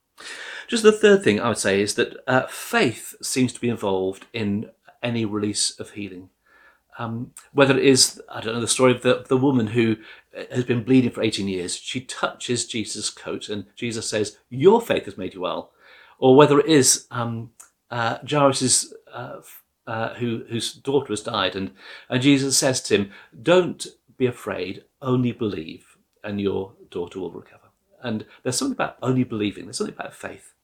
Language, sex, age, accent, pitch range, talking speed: English, male, 50-69, British, 110-140 Hz, 180 wpm